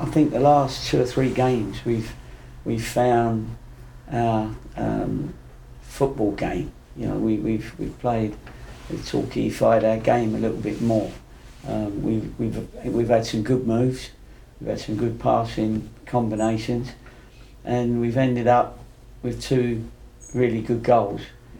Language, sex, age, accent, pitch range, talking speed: English, male, 50-69, British, 110-125 Hz, 140 wpm